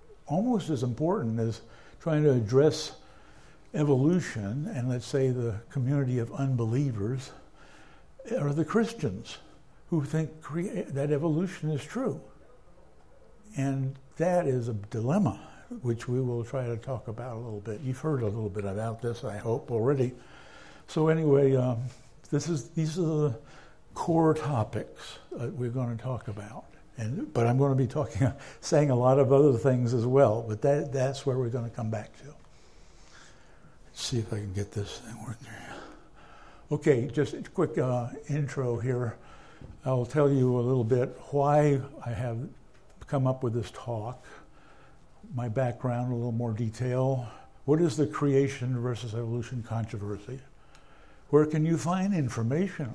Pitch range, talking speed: 120-145 Hz, 160 wpm